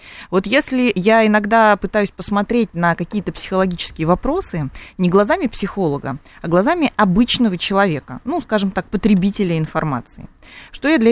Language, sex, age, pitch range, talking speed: Russian, female, 20-39, 175-260 Hz, 135 wpm